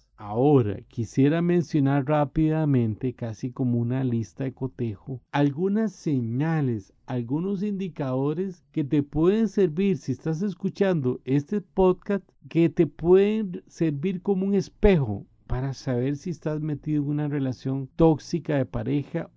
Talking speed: 125 wpm